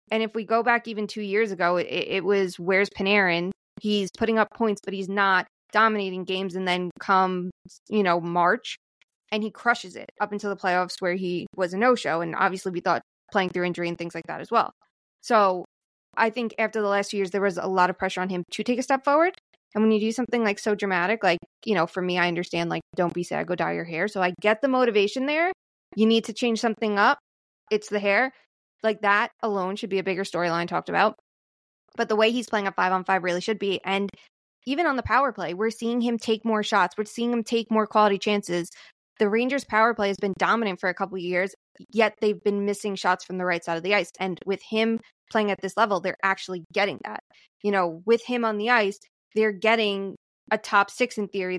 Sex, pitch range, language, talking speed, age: female, 180-220 Hz, English, 235 wpm, 20-39